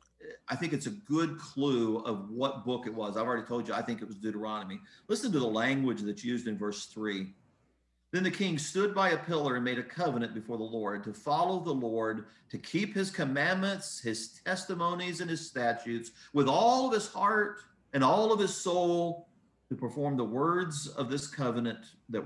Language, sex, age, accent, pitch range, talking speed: English, male, 40-59, American, 115-170 Hz, 200 wpm